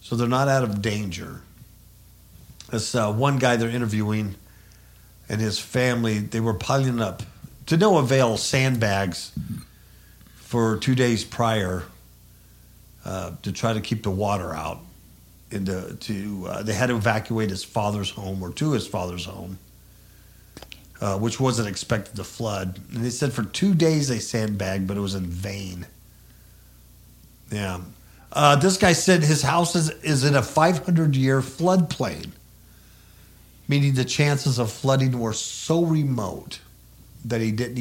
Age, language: 50-69, English